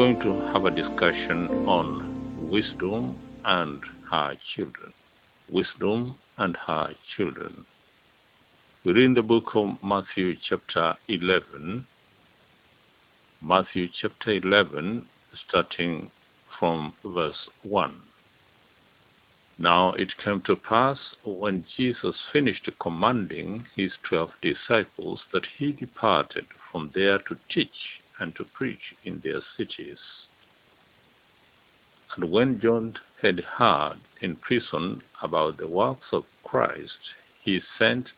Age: 60-79